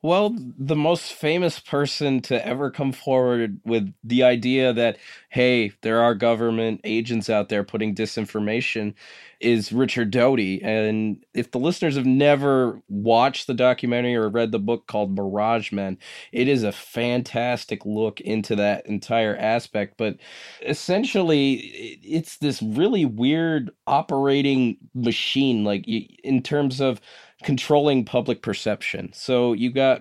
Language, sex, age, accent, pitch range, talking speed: English, male, 20-39, American, 110-135 Hz, 135 wpm